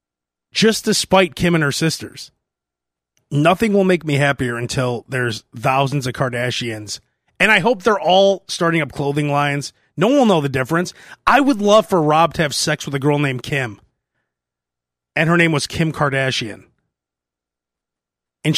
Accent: American